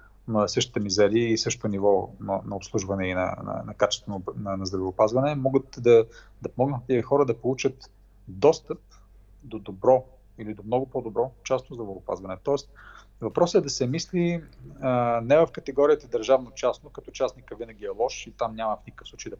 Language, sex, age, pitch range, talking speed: English, male, 40-59, 110-135 Hz, 175 wpm